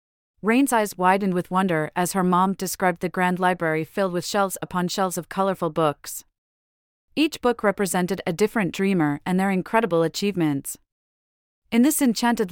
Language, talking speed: English, 160 wpm